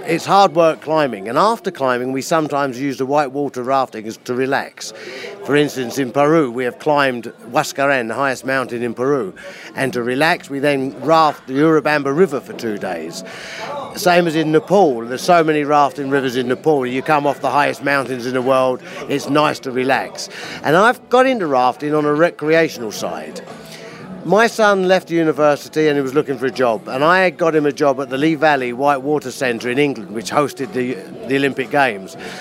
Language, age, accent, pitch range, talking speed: English, 50-69, British, 130-160 Hz, 195 wpm